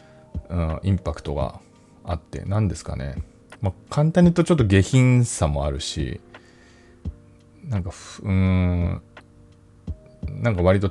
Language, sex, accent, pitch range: Japanese, male, native, 80-115 Hz